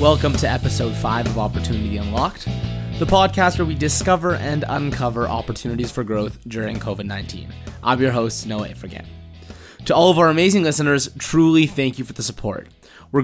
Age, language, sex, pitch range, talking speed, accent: 20-39, English, male, 110-150 Hz, 170 wpm, American